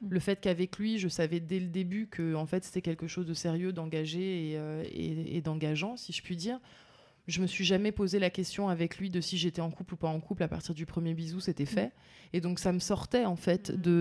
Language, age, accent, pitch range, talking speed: French, 20-39, French, 160-190 Hz, 260 wpm